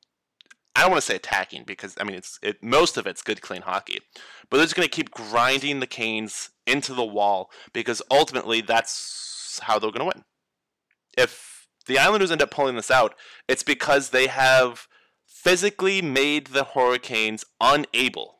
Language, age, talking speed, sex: English, 20-39, 175 wpm, male